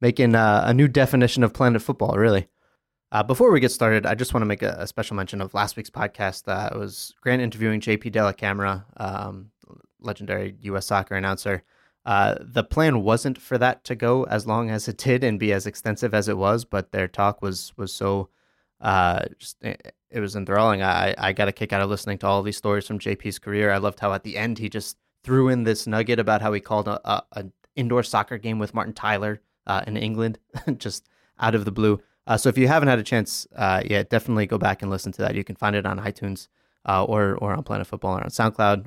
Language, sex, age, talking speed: English, male, 20-39, 230 wpm